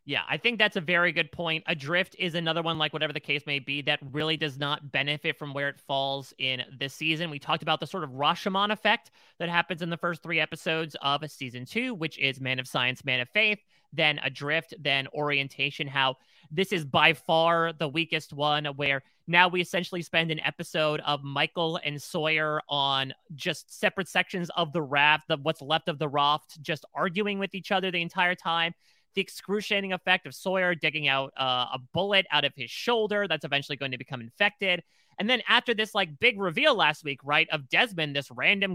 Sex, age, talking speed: male, 30-49, 205 wpm